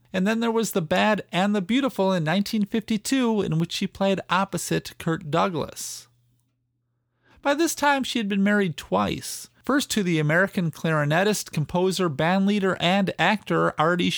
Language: English